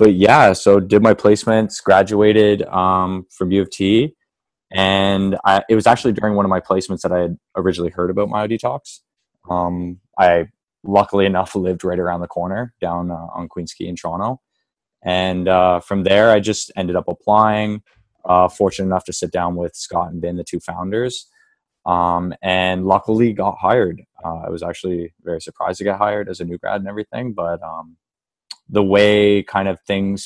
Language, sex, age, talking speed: English, male, 20-39, 185 wpm